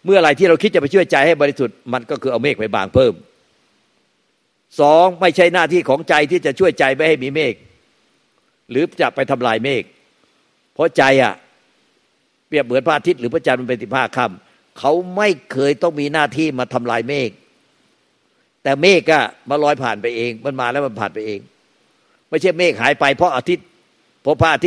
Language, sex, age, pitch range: Thai, male, 60-79, 125-170 Hz